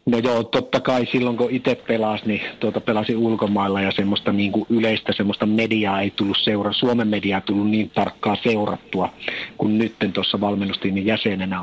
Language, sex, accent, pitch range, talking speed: Finnish, male, native, 105-120 Hz, 170 wpm